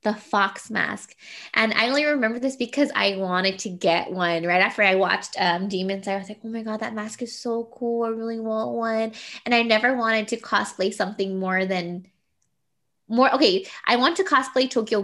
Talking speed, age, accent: 205 wpm, 20-39, American